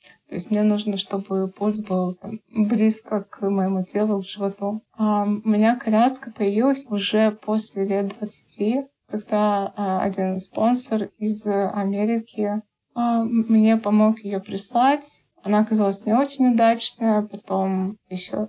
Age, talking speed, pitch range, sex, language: 20-39, 125 wpm, 205-230 Hz, female, Russian